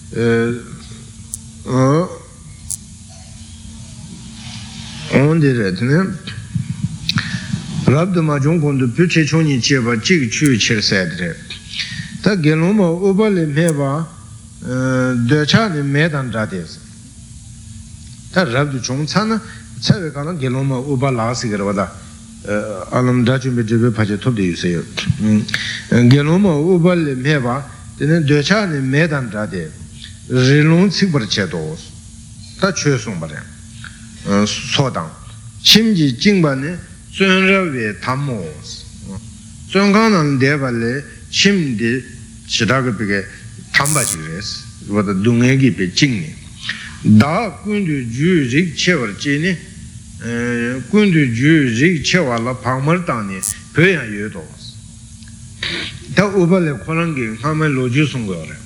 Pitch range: 110-155 Hz